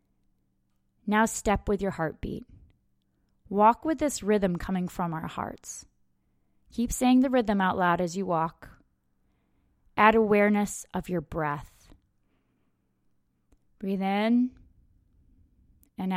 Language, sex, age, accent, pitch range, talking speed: English, female, 20-39, American, 170-220 Hz, 110 wpm